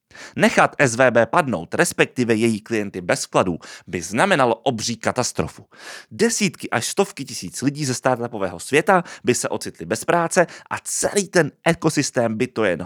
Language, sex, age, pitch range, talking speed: Czech, male, 30-49, 110-170 Hz, 150 wpm